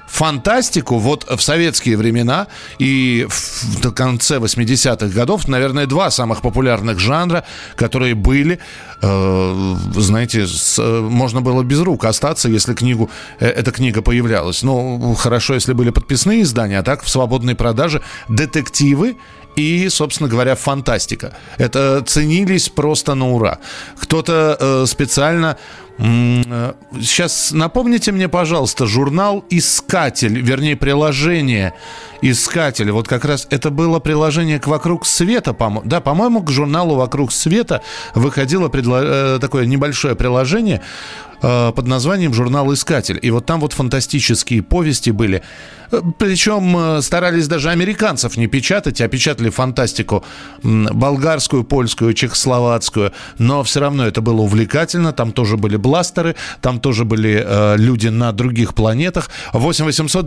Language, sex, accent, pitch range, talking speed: Russian, male, native, 115-155 Hz, 125 wpm